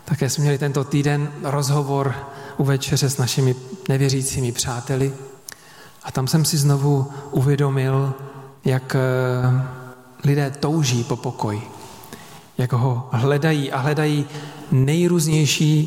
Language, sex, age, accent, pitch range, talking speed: Czech, male, 40-59, native, 130-155 Hz, 105 wpm